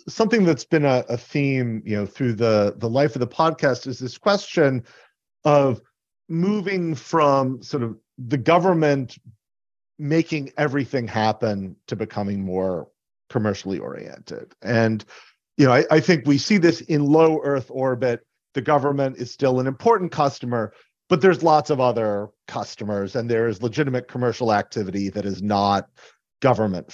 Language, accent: English, American